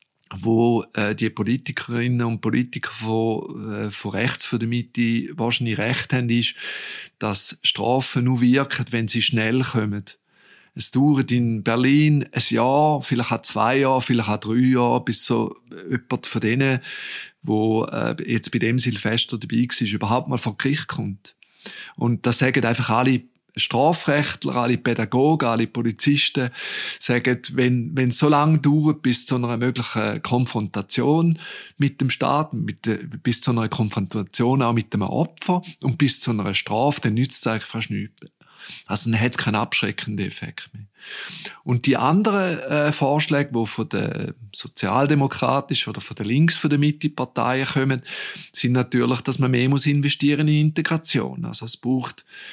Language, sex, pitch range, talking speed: German, male, 115-140 Hz, 160 wpm